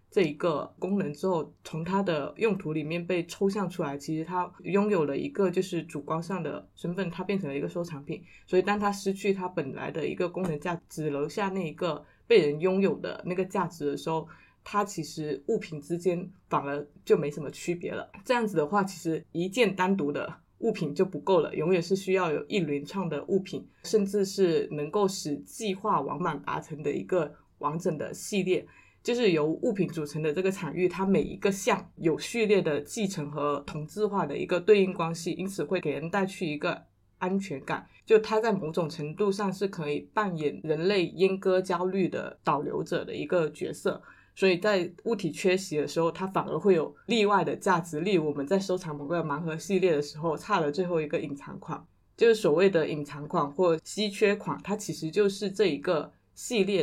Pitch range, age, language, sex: 155-195 Hz, 20-39, Chinese, female